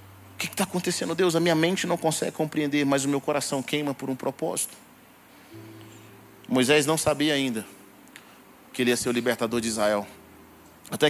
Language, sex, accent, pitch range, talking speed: Portuguese, male, Brazilian, 120-155 Hz, 175 wpm